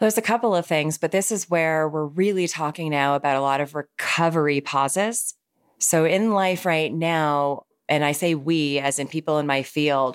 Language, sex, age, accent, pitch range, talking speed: English, female, 30-49, American, 150-190 Hz, 200 wpm